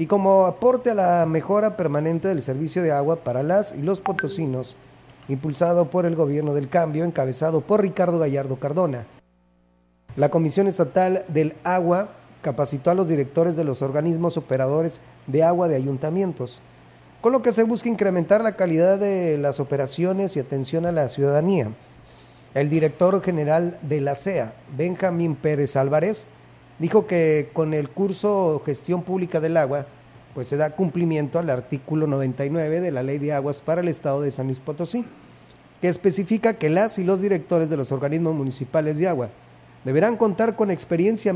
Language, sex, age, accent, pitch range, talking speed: Spanish, male, 30-49, Mexican, 140-185 Hz, 165 wpm